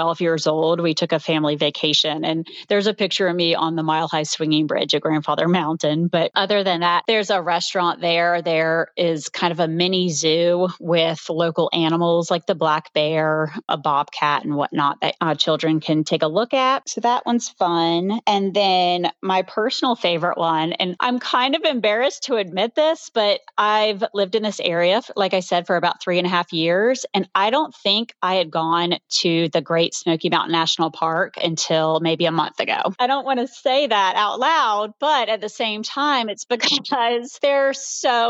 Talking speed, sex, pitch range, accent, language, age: 200 wpm, female, 165-215 Hz, American, English, 30-49